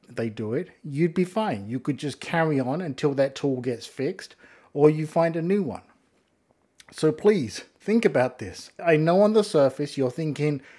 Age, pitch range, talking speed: 50-69, 130-165 Hz, 190 wpm